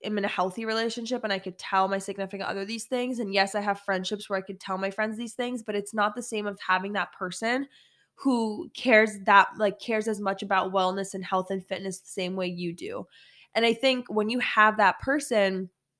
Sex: female